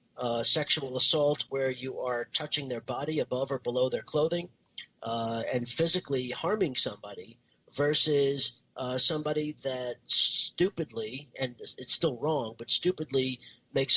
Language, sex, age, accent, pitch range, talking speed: English, male, 40-59, American, 125-150 Hz, 135 wpm